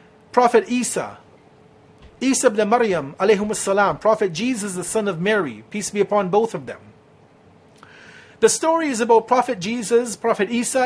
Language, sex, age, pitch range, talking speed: English, male, 40-59, 190-240 Hz, 140 wpm